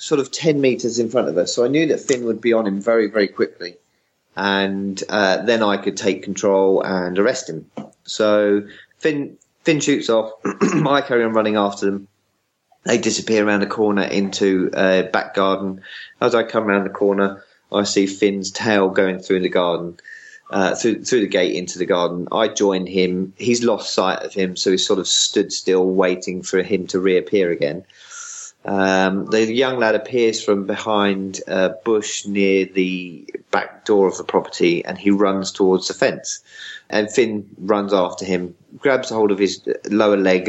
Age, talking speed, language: 30-49, 185 wpm, English